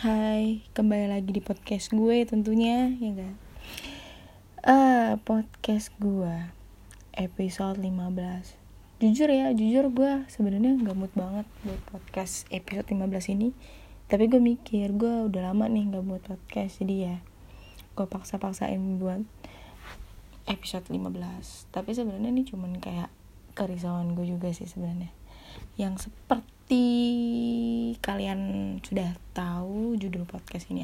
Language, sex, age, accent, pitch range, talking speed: Indonesian, female, 20-39, native, 175-220 Hz, 125 wpm